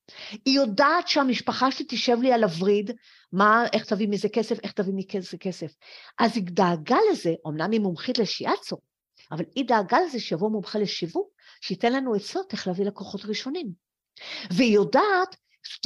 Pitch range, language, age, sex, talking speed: 200-285 Hz, Hebrew, 50-69, female, 165 wpm